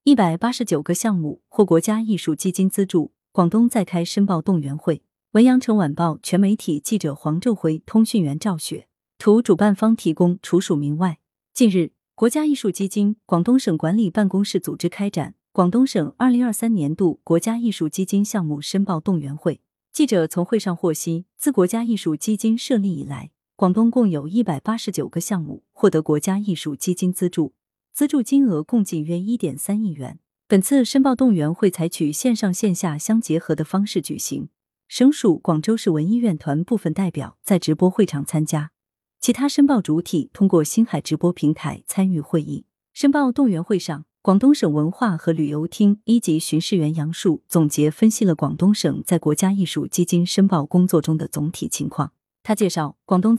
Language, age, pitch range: Chinese, 30-49, 160-215 Hz